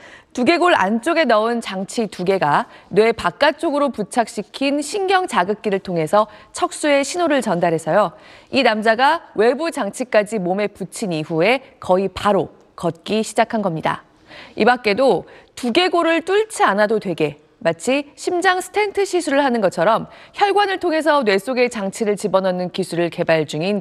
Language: Korean